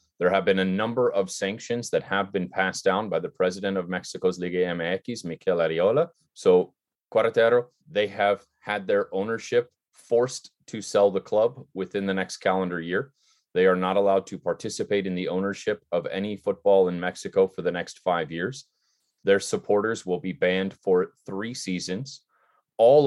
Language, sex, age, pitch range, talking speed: English, male, 30-49, 95-110 Hz, 170 wpm